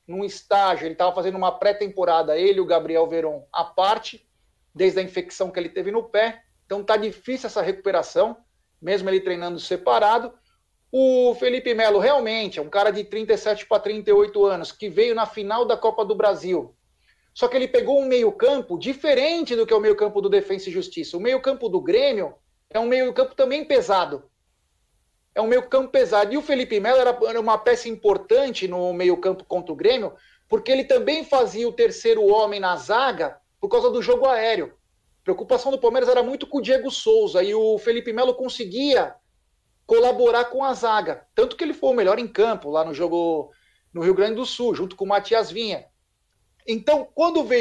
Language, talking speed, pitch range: Portuguese, 195 wpm, 200-280 Hz